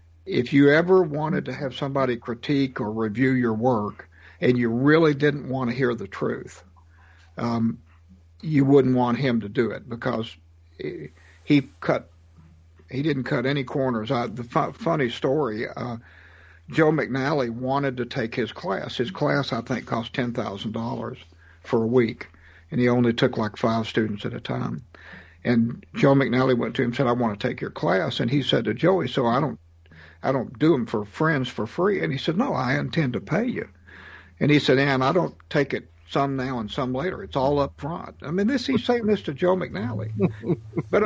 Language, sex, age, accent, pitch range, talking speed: English, male, 60-79, American, 105-165 Hz, 195 wpm